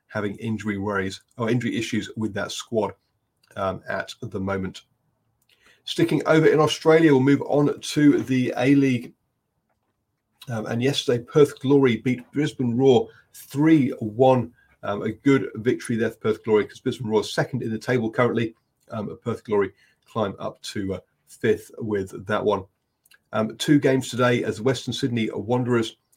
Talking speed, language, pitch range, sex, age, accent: 155 wpm, English, 105-130 Hz, male, 40-59, British